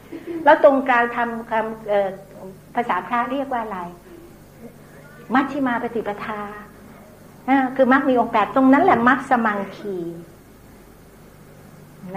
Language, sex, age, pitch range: Thai, female, 60-79, 190-260 Hz